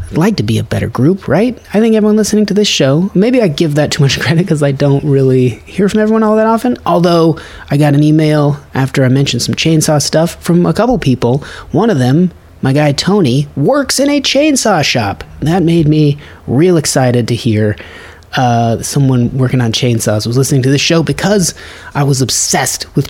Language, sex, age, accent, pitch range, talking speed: English, male, 30-49, American, 120-180 Hz, 205 wpm